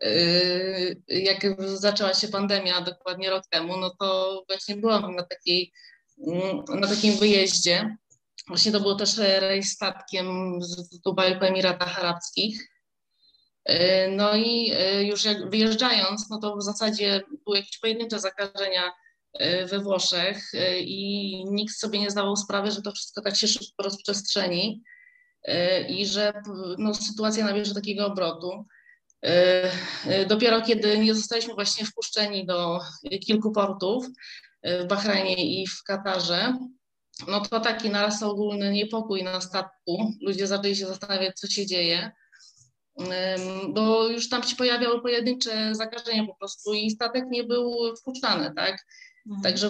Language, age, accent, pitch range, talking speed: Polish, 20-39, native, 190-215 Hz, 130 wpm